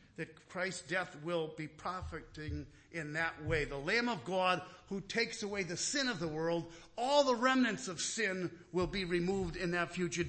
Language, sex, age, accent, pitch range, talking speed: English, male, 50-69, American, 155-225 Hz, 185 wpm